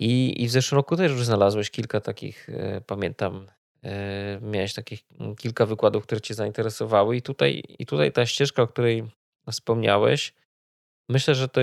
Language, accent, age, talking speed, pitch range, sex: Polish, native, 20-39, 150 wpm, 105-125 Hz, male